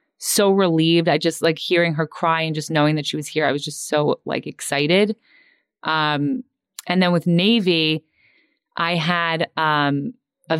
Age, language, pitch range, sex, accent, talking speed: 20-39, English, 150-180 Hz, female, American, 170 wpm